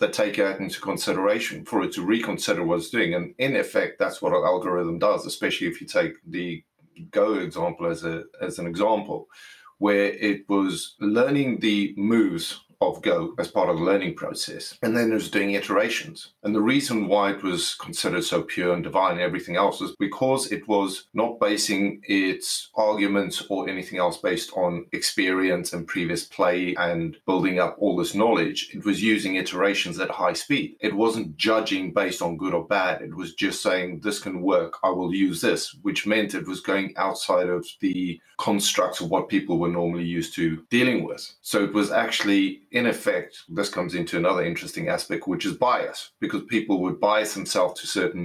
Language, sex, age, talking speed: English, male, 40-59, 190 wpm